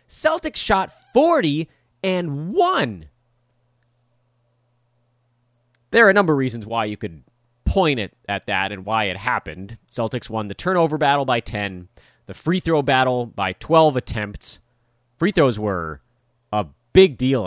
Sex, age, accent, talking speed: male, 30-49, American, 145 wpm